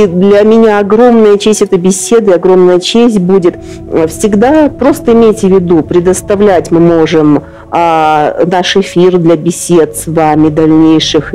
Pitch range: 155-185 Hz